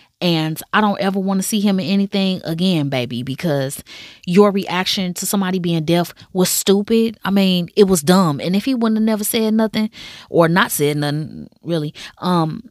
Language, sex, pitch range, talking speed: English, female, 150-205 Hz, 190 wpm